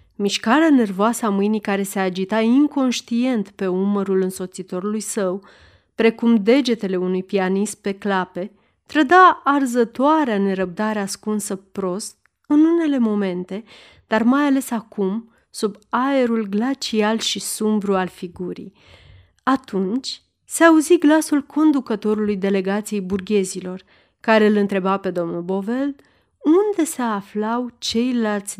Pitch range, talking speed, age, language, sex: 190-260 Hz, 115 wpm, 30-49, Romanian, female